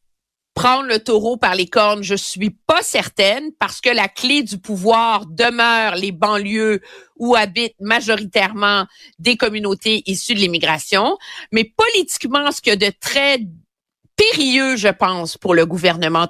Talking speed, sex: 150 wpm, female